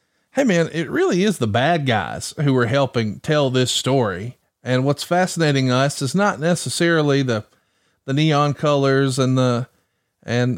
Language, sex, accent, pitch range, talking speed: English, male, American, 120-160 Hz, 160 wpm